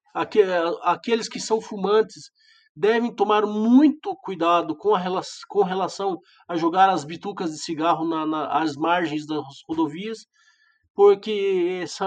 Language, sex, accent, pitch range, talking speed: Portuguese, male, Brazilian, 175-265 Hz, 115 wpm